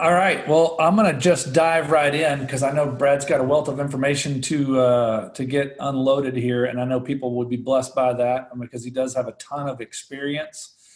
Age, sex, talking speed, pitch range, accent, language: 40-59, male, 230 wpm, 130-160 Hz, American, English